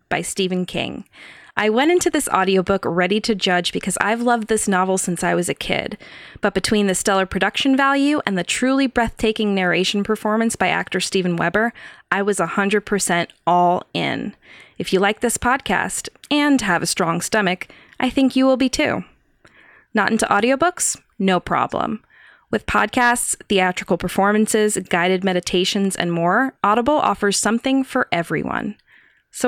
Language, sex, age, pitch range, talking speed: English, female, 20-39, 180-245 Hz, 155 wpm